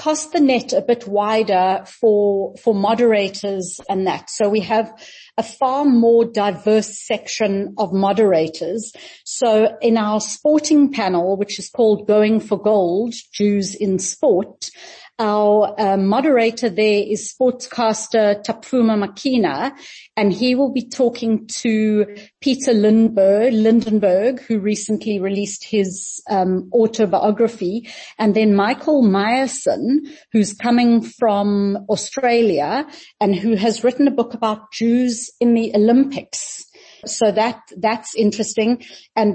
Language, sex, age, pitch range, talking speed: English, female, 40-59, 200-235 Hz, 125 wpm